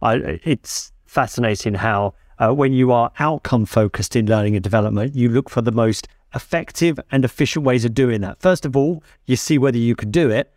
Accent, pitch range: British, 120-155 Hz